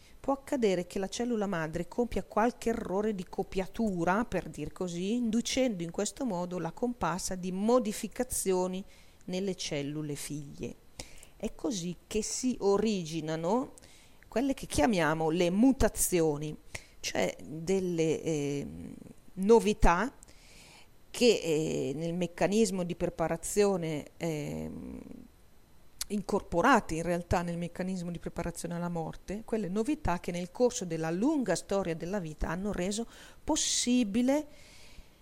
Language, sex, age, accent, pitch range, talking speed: Italian, female, 40-59, native, 170-220 Hz, 115 wpm